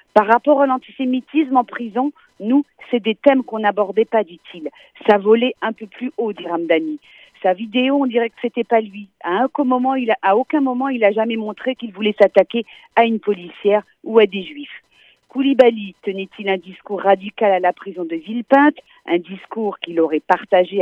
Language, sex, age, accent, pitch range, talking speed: French, female, 50-69, French, 185-255 Hz, 200 wpm